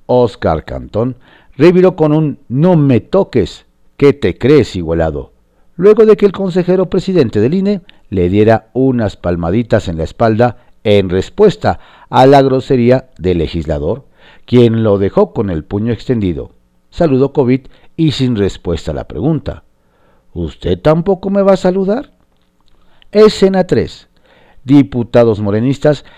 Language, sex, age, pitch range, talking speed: Spanish, male, 50-69, 95-155 Hz, 135 wpm